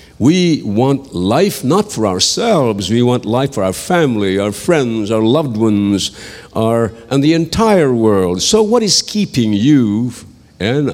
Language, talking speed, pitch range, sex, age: English, 150 wpm, 105-140 Hz, male, 60-79